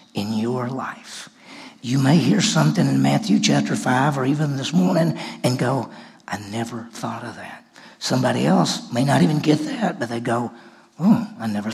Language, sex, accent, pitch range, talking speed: English, male, American, 120-150 Hz, 180 wpm